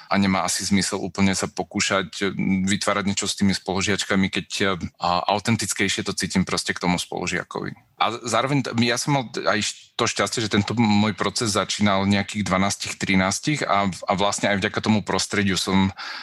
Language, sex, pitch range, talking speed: Slovak, male, 100-110 Hz, 155 wpm